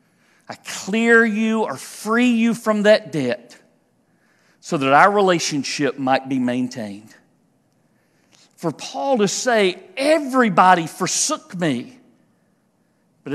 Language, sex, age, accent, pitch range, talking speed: English, male, 50-69, American, 160-245 Hz, 110 wpm